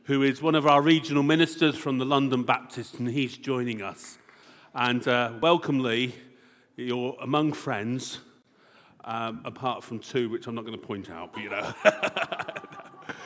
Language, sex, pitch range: English, male, 125-165 Hz